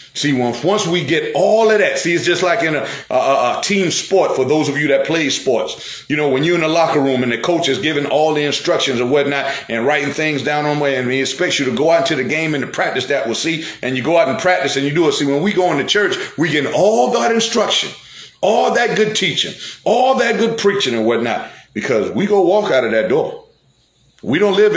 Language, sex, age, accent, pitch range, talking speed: English, male, 40-59, American, 130-180 Hz, 260 wpm